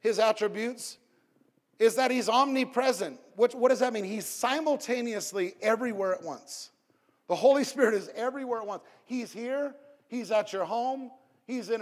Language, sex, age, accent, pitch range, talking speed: English, male, 50-69, American, 200-245 Hz, 155 wpm